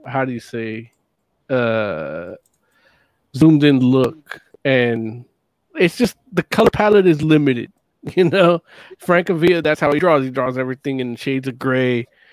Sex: male